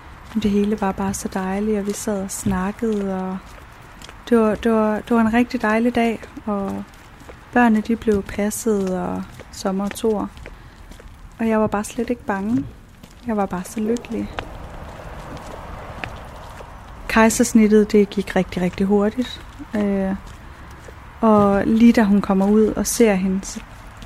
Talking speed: 140 wpm